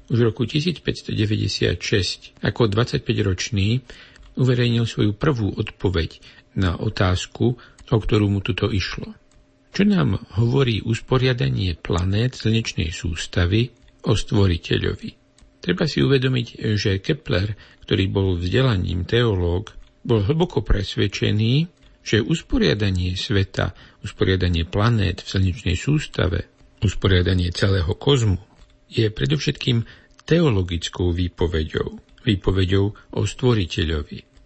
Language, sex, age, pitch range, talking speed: Slovak, male, 50-69, 95-120 Hz, 100 wpm